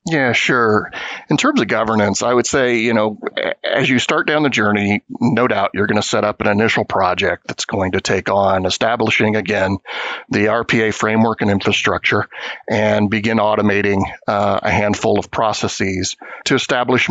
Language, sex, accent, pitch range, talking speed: English, male, American, 100-115 Hz, 170 wpm